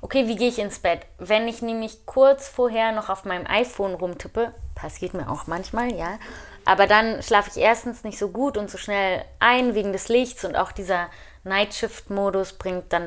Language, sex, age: German, female, 20-39